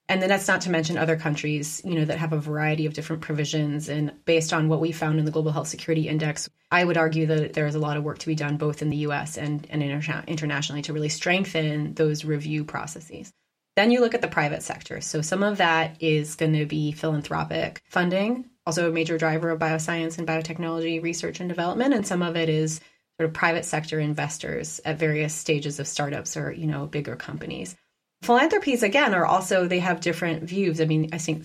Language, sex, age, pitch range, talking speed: English, female, 20-39, 155-175 Hz, 220 wpm